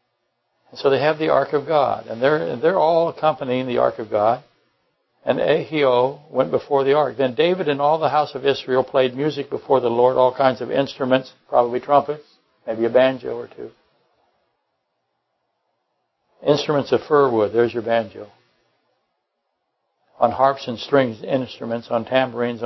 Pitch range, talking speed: 125-160 Hz, 155 wpm